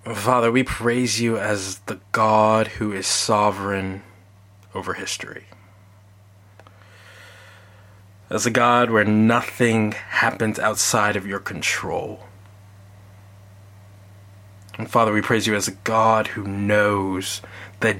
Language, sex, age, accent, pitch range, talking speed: English, male, 20-39, American, 100-115 Hz, 110 wpm